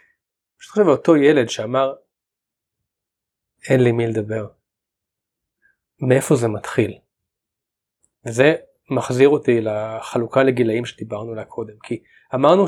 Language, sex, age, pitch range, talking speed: Hebrew, male, 30-49, 120-160 Hz, 110 wpm